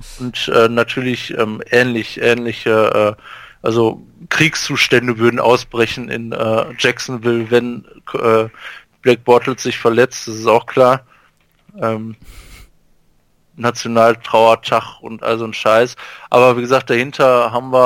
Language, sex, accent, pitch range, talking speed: German, male, German, 105-130 Hz, 125 wpm